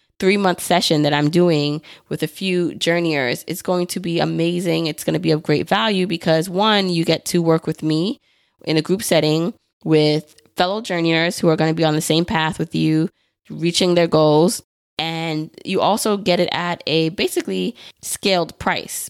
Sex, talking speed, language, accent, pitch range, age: female, 190 wpm, English, American, 160-180 Hz, 20-39